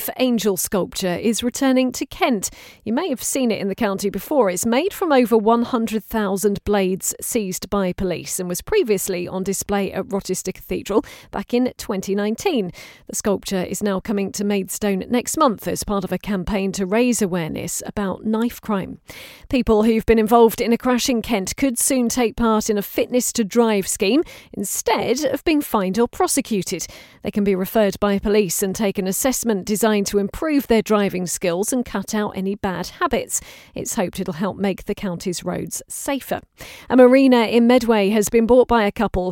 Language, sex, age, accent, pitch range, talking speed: English, female, 40-59, British, 195-240 Hz, 185 wpm